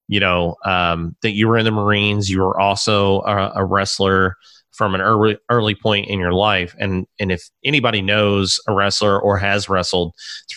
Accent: American